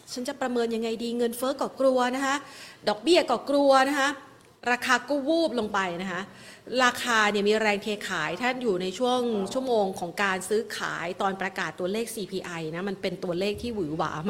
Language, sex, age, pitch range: Thai, female, 30-49, 190-255 Hz